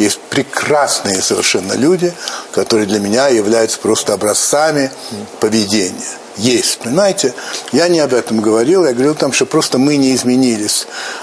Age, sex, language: 60-79, male, Russian